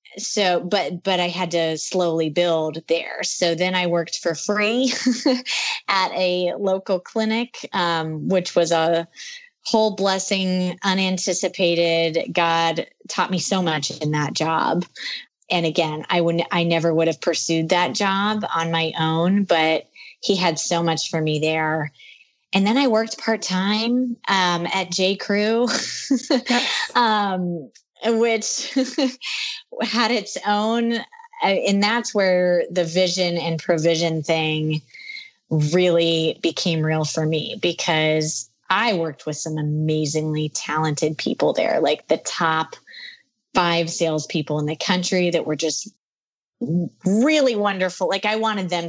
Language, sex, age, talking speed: English, female, 20-39, 135 wpm